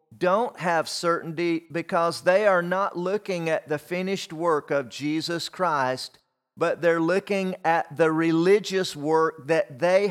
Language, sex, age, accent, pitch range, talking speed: English, male, 40-59, American, 145-185 Hz, 140 wpm